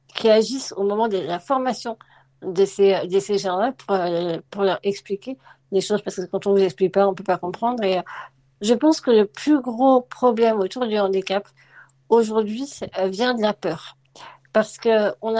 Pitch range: 195-225 Hz